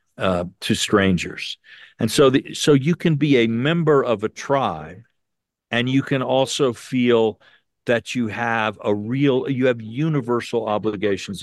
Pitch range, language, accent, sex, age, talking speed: 105-130 Hz, English, American, male, 50-69, 145 wpm